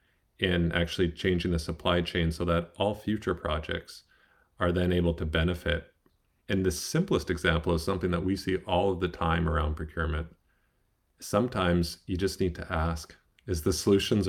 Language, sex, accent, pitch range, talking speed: English, male, American, 80-90 Hz, 170 wpm